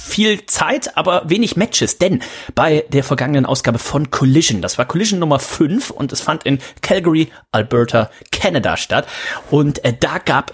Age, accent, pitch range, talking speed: 30-49, German, 125-155 Hz, 165 wpm